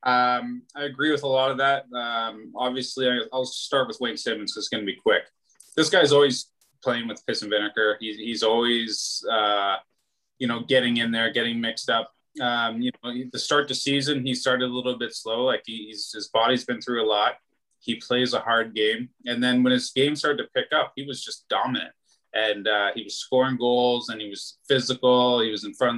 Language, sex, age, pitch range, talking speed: English, male, 20-39, 115-140 Hz, 220 wpm